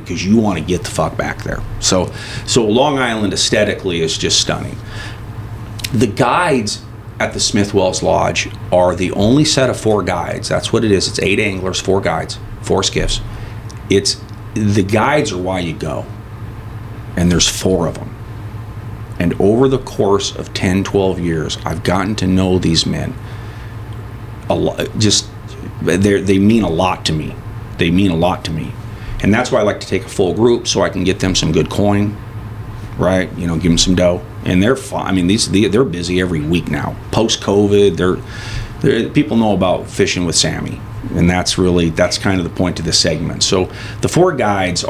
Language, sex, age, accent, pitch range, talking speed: English, male, 40-59, American, 90-110 Hz, 190 wpm